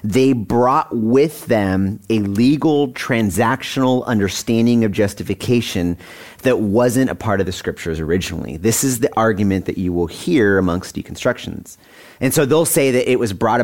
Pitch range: 100-130 Hz